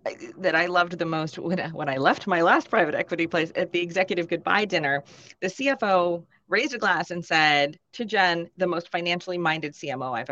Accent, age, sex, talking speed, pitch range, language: American, 30-49, female, 200 wpm, 160-210 Hz, English